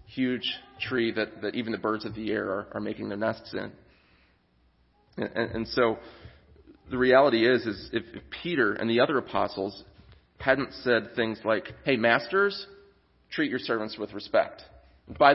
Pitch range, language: 105-135 Hz, English